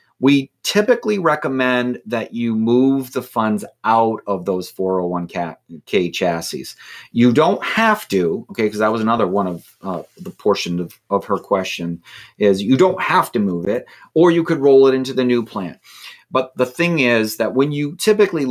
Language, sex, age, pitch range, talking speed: English, male, 30-49, 105-130 Hz, 180 wpm